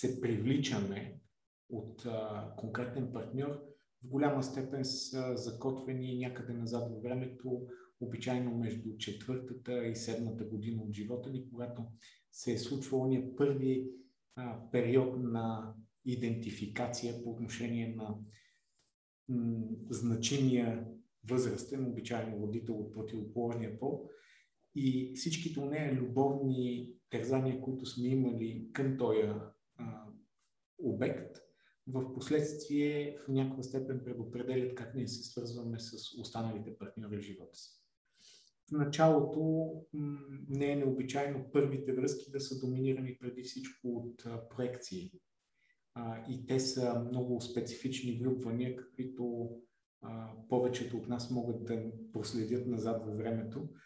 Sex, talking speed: male, 115 wpm